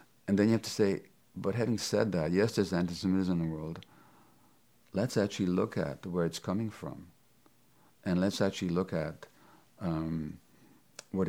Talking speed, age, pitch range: 165 wpm, 50-69, 85-100 Hz